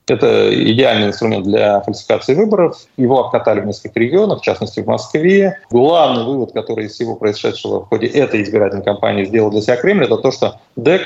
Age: 20-39